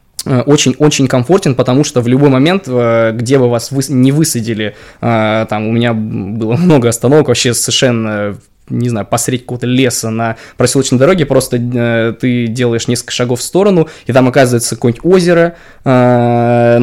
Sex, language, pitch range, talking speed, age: male, Russian, 115-130 Hz, 150 wpm, 20-39